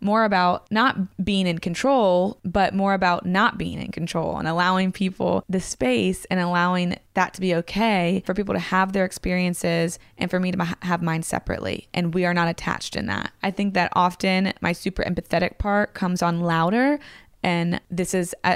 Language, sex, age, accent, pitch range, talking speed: English, female, 20-39, American, 170-195 Hz, 190 wpm